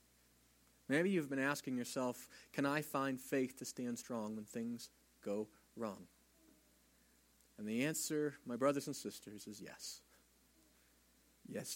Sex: male